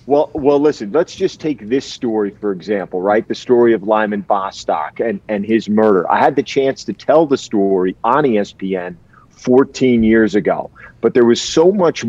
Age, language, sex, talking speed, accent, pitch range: 40-59, English, male, 190 wpm, American, 105-130 Hz